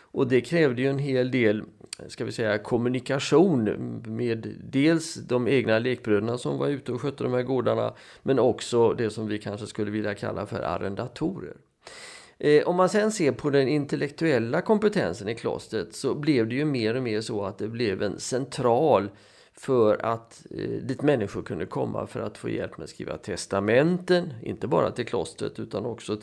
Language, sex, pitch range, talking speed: Swedish, male, 110-145 Hz, 180 wpm